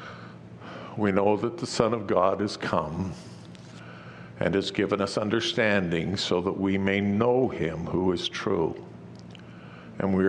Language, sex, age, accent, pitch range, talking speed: English, male, 60-79, American, 75-100 Hz, 145 wpm